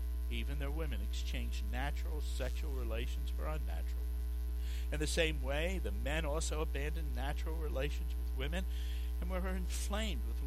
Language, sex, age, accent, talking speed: English, male, 60-79, American, 150 wpm